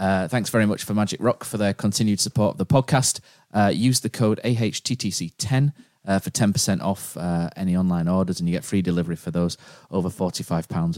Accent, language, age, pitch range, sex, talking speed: British, English, 30-49, 90-105 Hz, male, 195 wpm